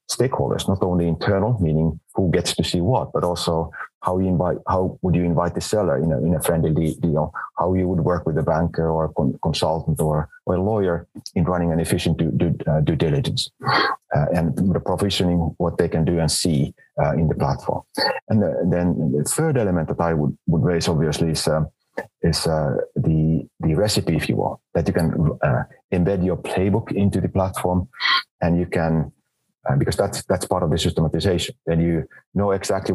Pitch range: 80-95 Hz